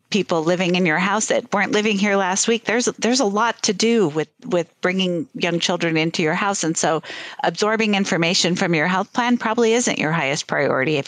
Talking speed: 210 wpm